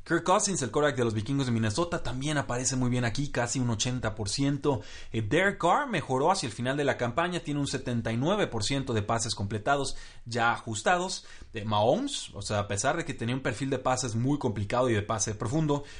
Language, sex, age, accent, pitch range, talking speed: Spanish, male, 30-49, Mexican, 110-140 Hz, 205 wpm